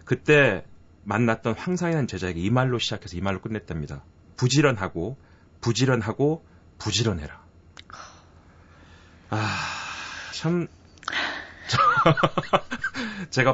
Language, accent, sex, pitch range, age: Korean, native, male, 80-115 Hz, 30-49